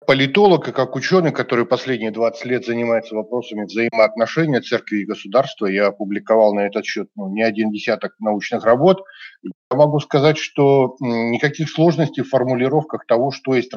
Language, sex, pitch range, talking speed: Russian, male, 120-160 Hz, 155 wpm